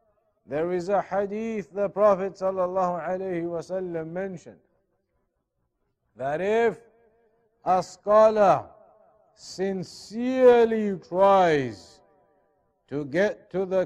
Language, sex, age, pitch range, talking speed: English, male, 50-69, 175-210 Hz, 80 wpm